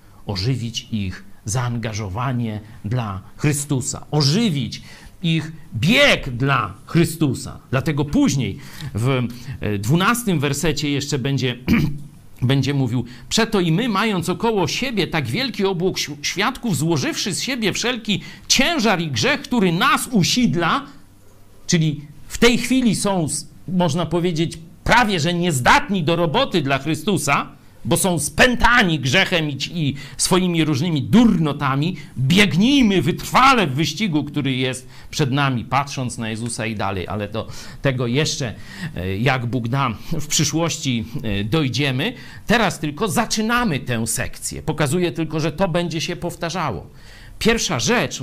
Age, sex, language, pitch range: 50-69, male, Polish, 120-175 Hz